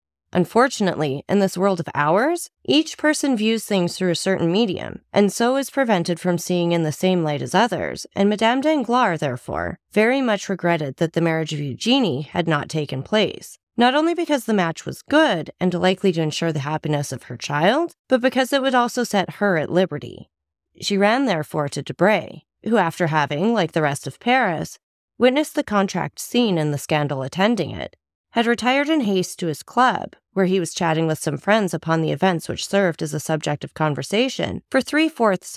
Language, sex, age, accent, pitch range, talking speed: English, female, 30-49, American, 155-225 Hz, 195 wpm